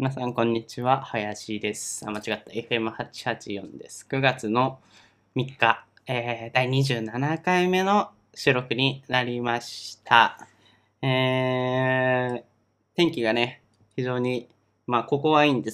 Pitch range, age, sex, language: 115-150 Hz, 20-39, male, Japanese